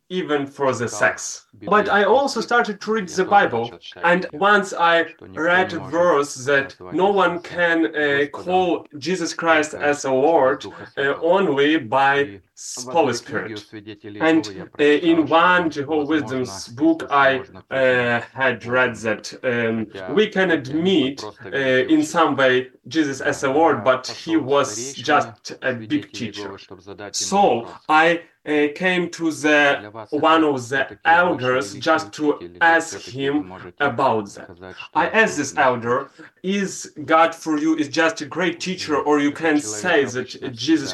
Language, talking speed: English, 145 wpm